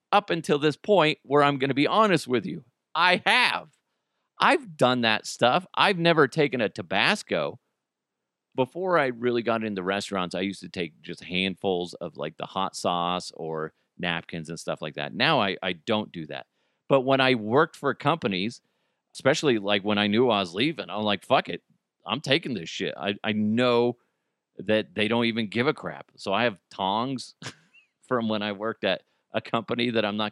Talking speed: 195 wpm